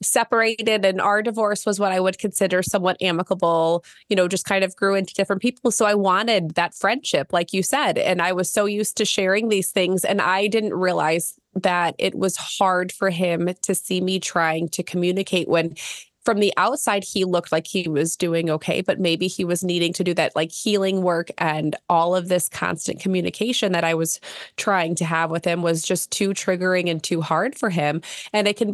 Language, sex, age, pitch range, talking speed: English, female, 20-39, 170-200 Hz, 210 wpm